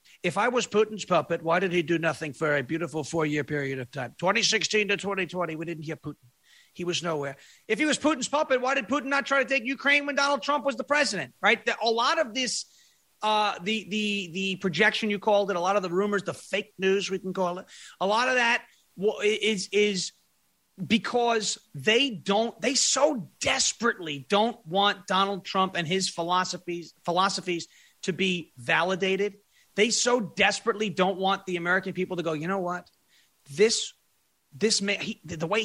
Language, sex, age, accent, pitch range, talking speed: English, male, 30-49, American, 175-215 Hz, 190 wpm